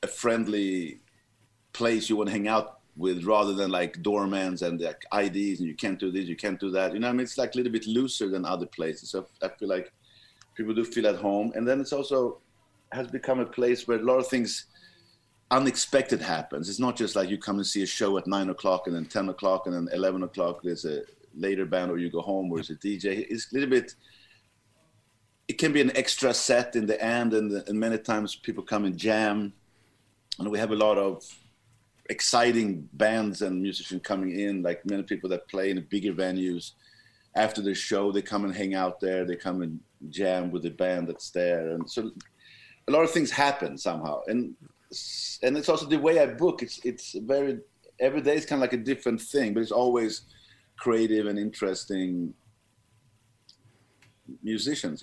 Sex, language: male, English